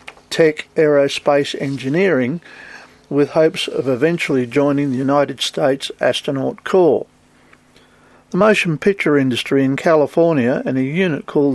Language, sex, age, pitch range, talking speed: English, male, 50-69, 135-165 Hz, 120 wpm